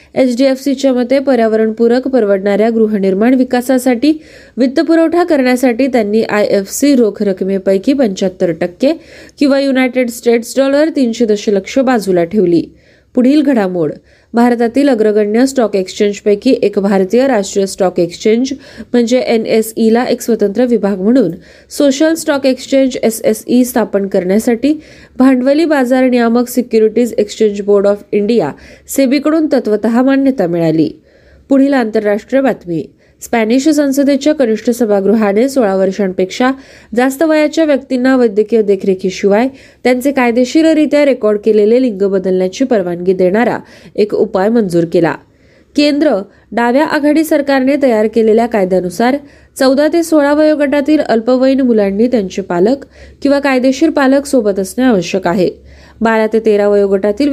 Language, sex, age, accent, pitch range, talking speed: Marathi, female, 20-39, native, 205-270 Hz, 110 wpm